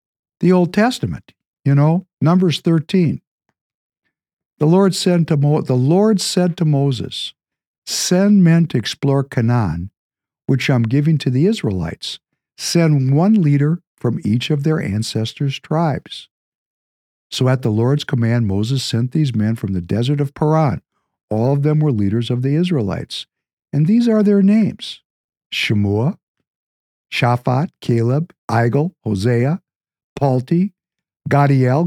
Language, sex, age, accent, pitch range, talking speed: English, male, 60-79, American, 120-180 Hz, 135 wpm